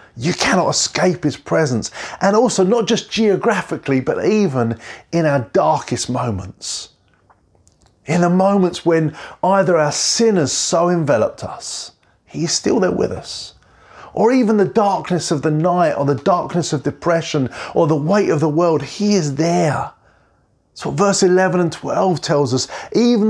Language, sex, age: English, male, 30-49